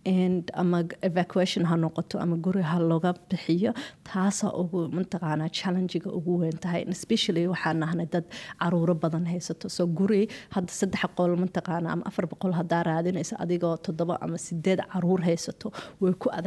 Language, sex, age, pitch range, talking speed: Finnish, female, 30-49, 170-185 Hz, 55 wpm